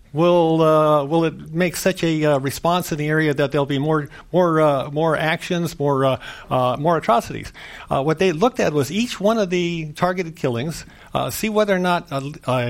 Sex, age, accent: male, 50-69, American